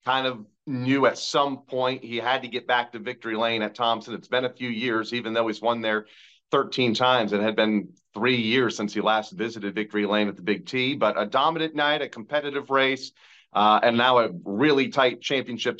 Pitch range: 105-135 Hz